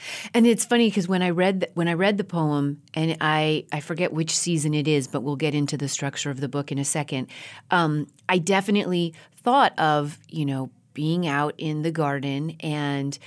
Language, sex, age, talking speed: English, female, 30-49, 195 wpm